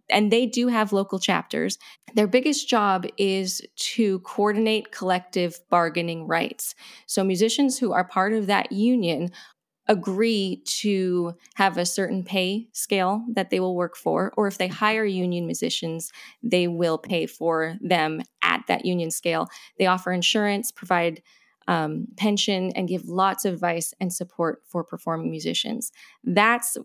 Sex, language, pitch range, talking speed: female, English, 175-210 Hz, 150 wpm